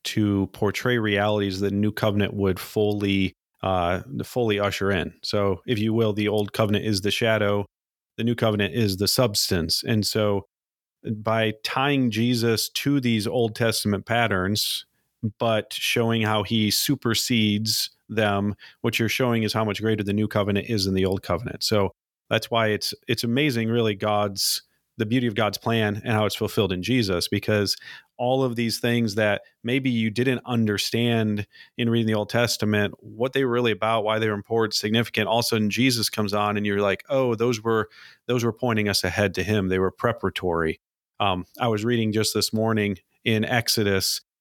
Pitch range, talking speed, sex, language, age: 100-115 Hz, 185 wpm, male, English, 40-59